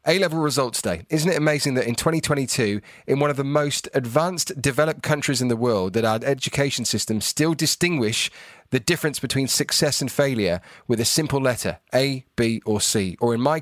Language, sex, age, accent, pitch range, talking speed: English, male, 30-49, British, 120-150 Hz, 190 wpm